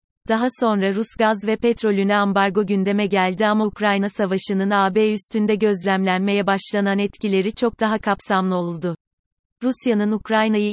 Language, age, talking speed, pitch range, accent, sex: Turkish, 30-49, 130 wpm, 190-220 Hz, native, female